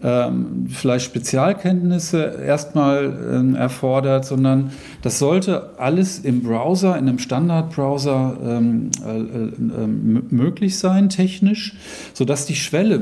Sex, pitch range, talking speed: male, 130-170 Hz, 90 wpm